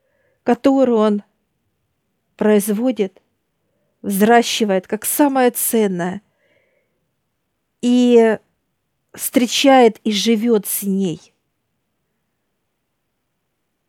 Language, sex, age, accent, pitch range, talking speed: Russian, female, 50-69, native, 205-240 Hz, 55 wpm